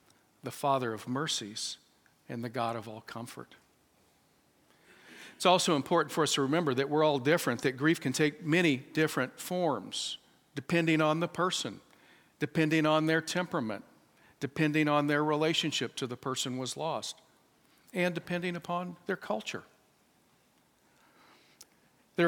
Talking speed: 135 wpm